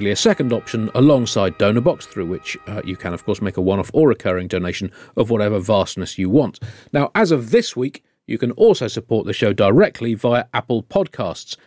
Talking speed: 195 wpm